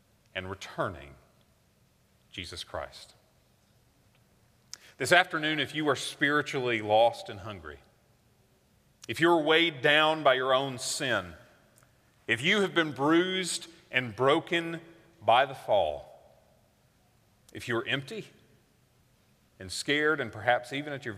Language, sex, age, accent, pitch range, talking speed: English, male, 40-59, American, 105-145 Hz, 120 wpm